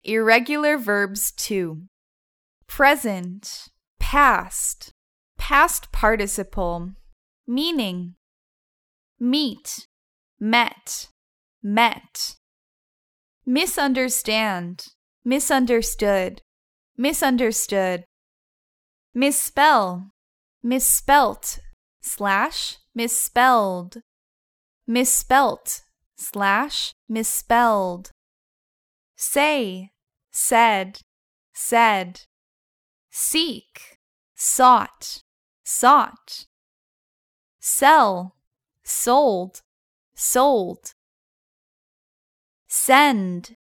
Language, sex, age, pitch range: Thai, female, 10-29, 190-260 Hz